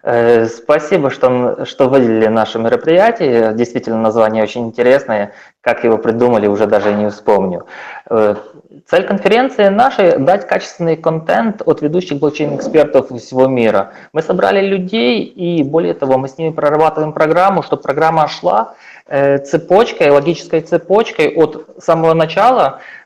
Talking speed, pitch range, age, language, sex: 120 wpm, 130-165 Hz, 20-39, Russian, male